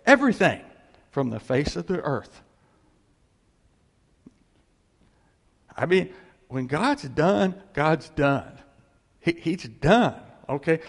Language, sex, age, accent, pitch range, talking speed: English, male, 60-79, American, 140-235 Hz, 95 wpm